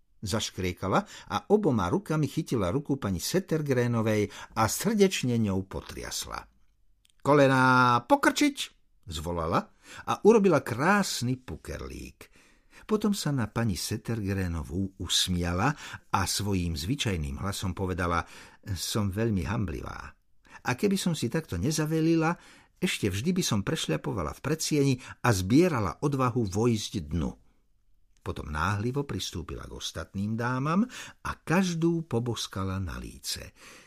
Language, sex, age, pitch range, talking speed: Slovak, male, 60-79, 95-150 Hz, 110 wpm